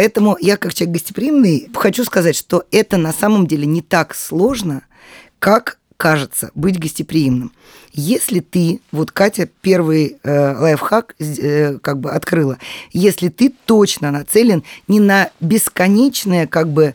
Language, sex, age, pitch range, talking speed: Russian, female, 20-39, 160-210 Hz, 130 wpm